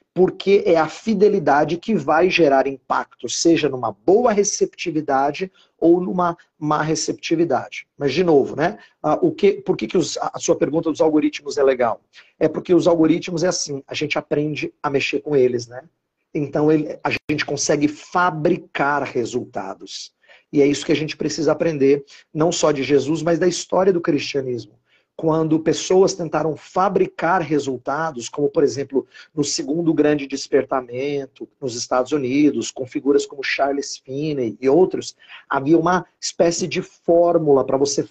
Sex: male